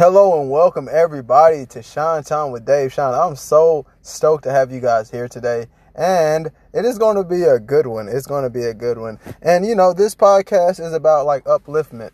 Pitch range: 115-145 Hz